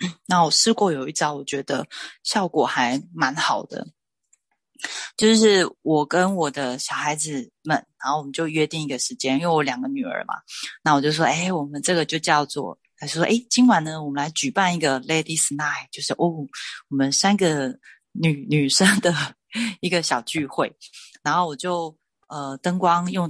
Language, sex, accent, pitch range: Chinese, female, native, 140-170 Hz